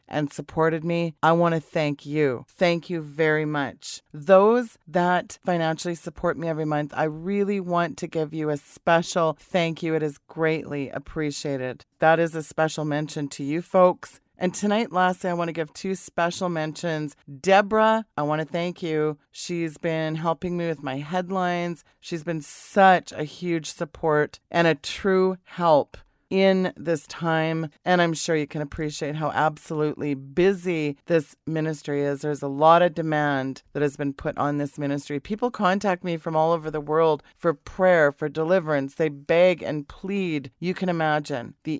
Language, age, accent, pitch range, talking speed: English, 30-49, American, 150-175 Hz, 175 wpm